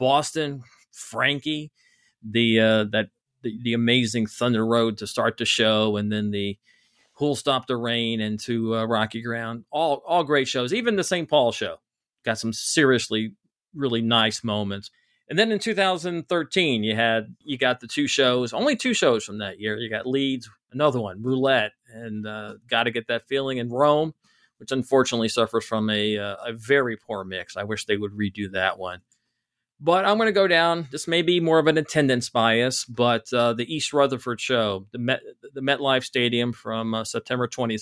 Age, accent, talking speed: 40-59, American, 190 wpm